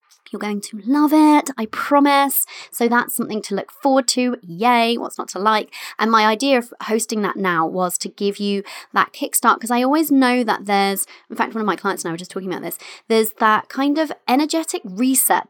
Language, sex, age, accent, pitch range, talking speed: English, female, 30-49, British, 190-245 Hz, 220 wpm